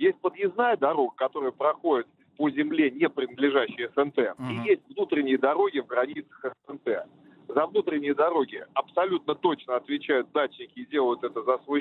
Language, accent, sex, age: Russian, native, male, 40-59